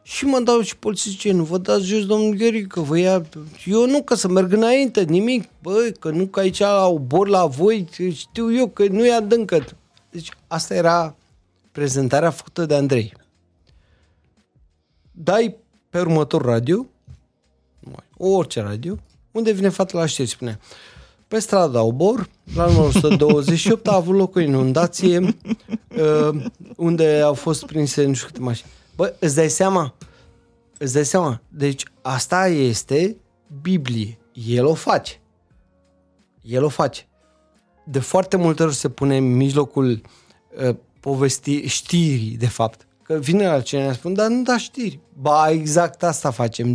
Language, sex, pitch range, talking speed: Romanian, male, 125-185 Hz, 150 wpm